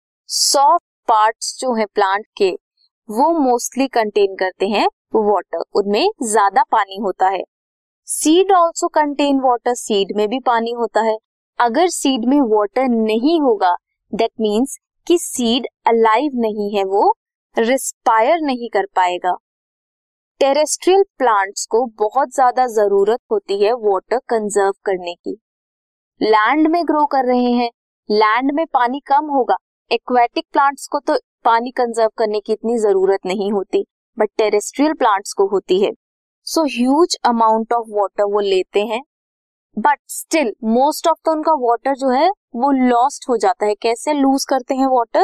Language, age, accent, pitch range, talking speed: Hindi, 20-39, native, 215-295 Hz, 120 wpm